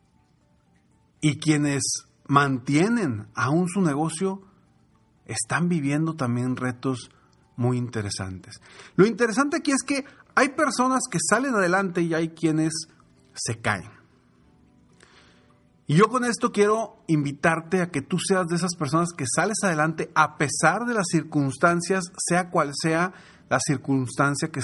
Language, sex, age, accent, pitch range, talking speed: Spanish, male, 40-59, Mexican, 125-175 Hz, 130 wpm